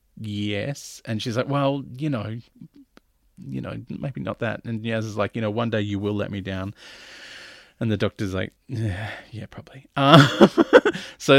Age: 30-49